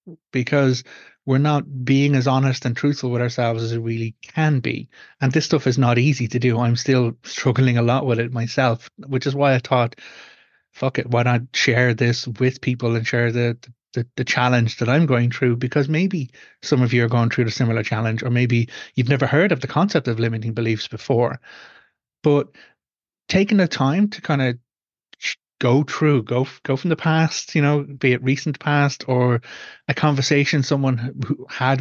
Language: English